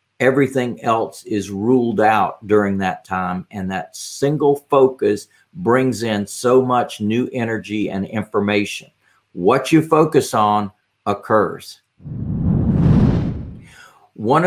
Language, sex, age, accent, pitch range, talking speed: English, male, 50-69, American, 105-130 Hz, 110 wpm